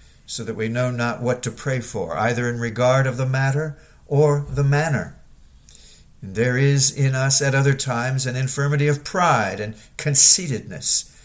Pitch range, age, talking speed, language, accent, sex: 110-140 Hz, 50-69, 165 wpm, English, American, male